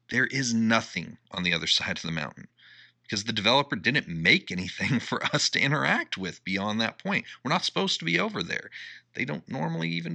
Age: 40-59